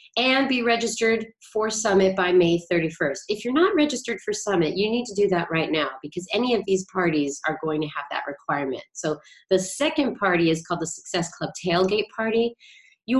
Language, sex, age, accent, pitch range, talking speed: English, female, 30-49, American, 180-230 Hz, 200 wpm